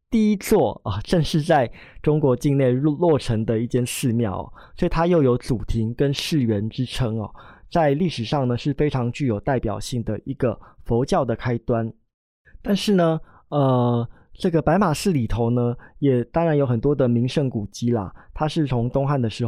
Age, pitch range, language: 20-39, 120-160 Hz, Chinese